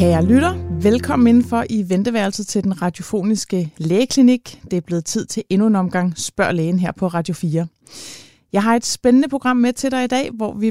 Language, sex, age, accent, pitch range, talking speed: Danish, female, 30-49, native, 175-225 Hz, 200 wpm